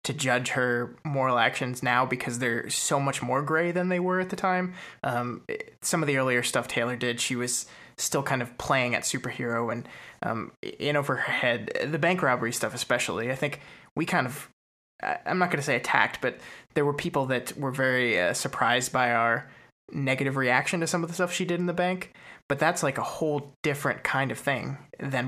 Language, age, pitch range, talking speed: English, 20-39, 125-160 Hz, 210 wpm